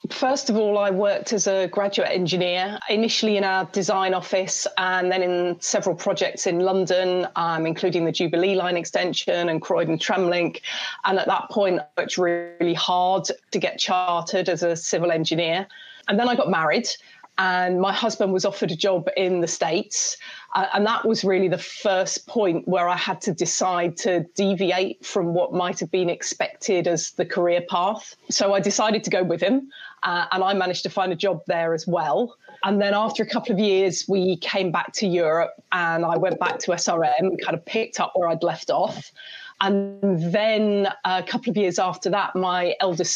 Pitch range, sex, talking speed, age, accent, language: 175-200 Hz, female, 195 wpm, 30-49, British, English